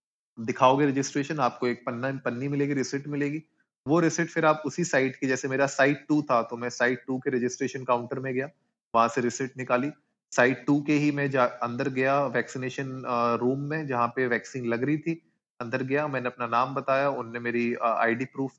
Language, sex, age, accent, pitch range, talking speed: Hindi, male, 30-49, native, 120-140 Hz, 115 wpm